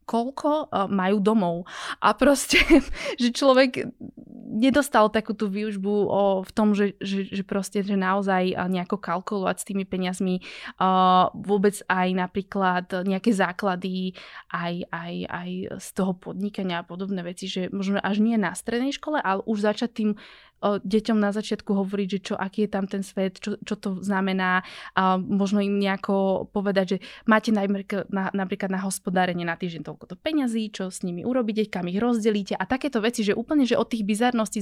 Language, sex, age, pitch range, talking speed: Slovak, female, 20-39, 190-220 Hz, 170 wpm